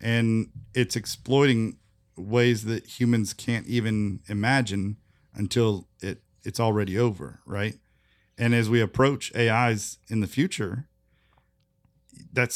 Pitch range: 95-120 Hz